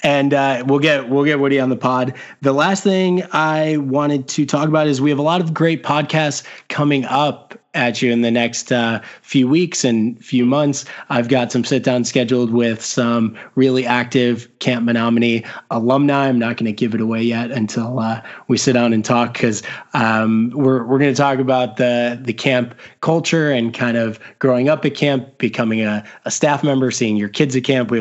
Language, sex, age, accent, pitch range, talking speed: English, male, 20-39, American, 115-140 Hz, 205 wpm